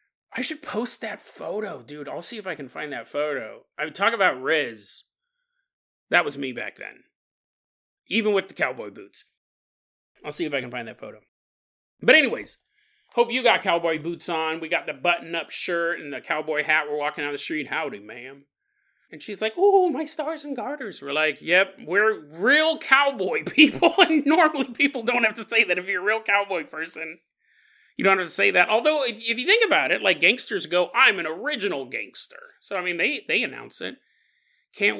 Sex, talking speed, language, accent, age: male, 200 wpm, English, American, 30-49